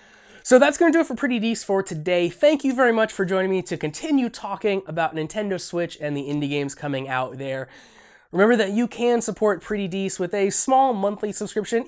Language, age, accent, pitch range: English, 20-39, American, 160-220 Hz